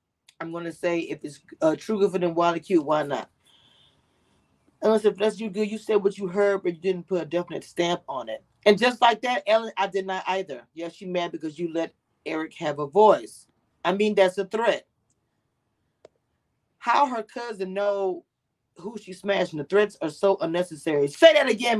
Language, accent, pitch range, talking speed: English, American, 160-215 Hz, 200 wpm